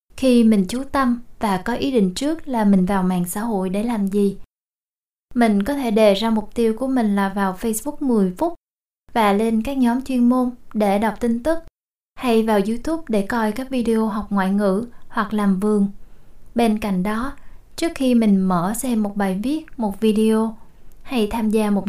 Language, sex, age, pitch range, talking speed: Vietnamese, female, 20-39, 205-250 Hz, 195 wpm